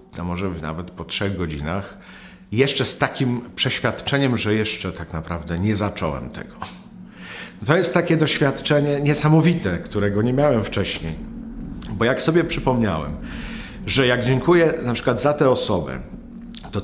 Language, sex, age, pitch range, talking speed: Polish, male, 50-69, 105-135 Hz, 140 wpm